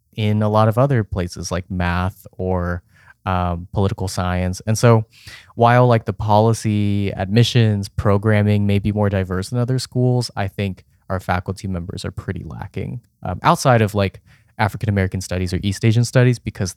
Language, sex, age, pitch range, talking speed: English, male, 20-39, 95-120 Hz, 165 wpm